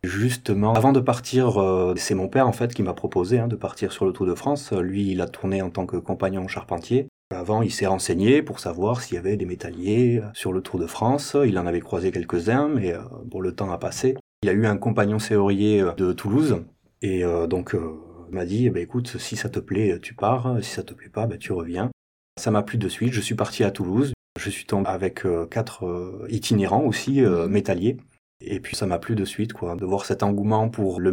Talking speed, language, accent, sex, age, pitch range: 245 wpm, French, French, male, 30-49, 95-115 Hz